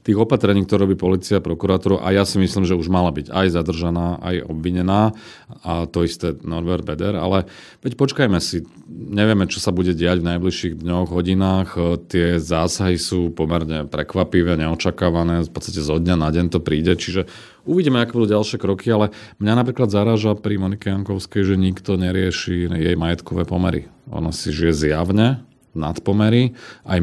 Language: Slovak